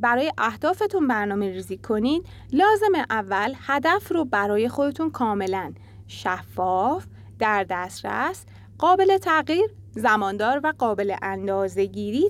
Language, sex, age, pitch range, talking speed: Arabic, female, 30-49, 200-320 Hz, 105 wpm